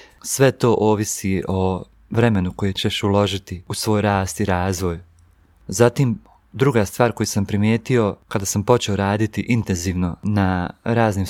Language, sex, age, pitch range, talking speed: Croatian, male, 30-49, 100-120 Hz, 140 wpm